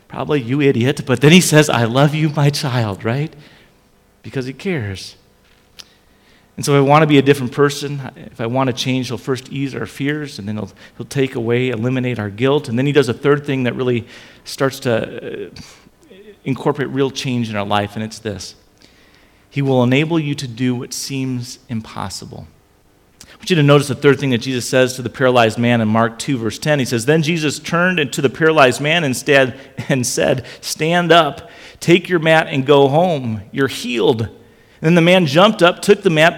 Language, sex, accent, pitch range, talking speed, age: English, male, American, 115-150 Hz, 210 wpm, 40-59